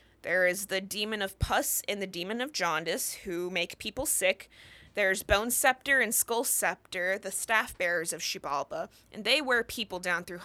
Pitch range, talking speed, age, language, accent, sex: 185-240 Hz, 185 wpm, 20-39, English, American, female